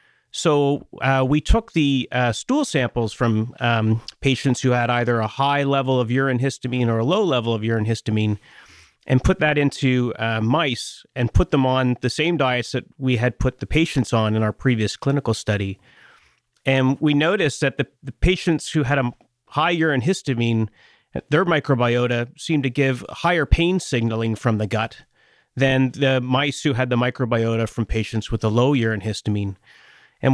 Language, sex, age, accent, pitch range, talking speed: English, male, 30-49, American, 115-140 Hz, 180 wpm